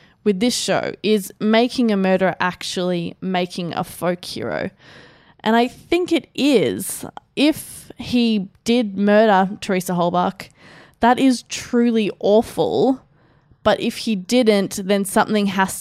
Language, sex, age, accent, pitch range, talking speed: English, female, 20-39, Australian, 195-235 Hz, 130 wpm